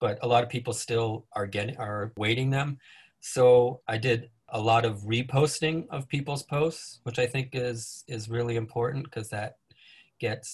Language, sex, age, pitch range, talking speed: English, male, 30-49, 115-130 Hz, 175 wpm